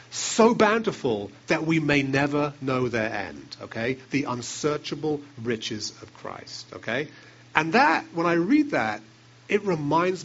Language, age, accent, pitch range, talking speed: English, 40-59, British, 115-145 Hz, 140 wpm